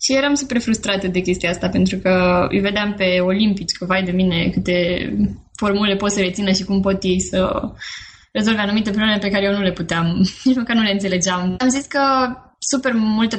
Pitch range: 195-265 Hz